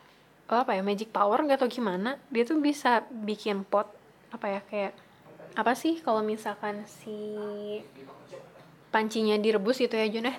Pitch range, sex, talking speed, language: 210-245 Hz, female, 145 wpm, Indonesian